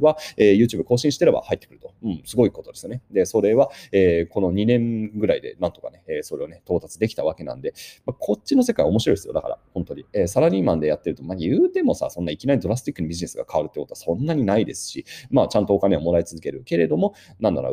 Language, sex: Japanese, male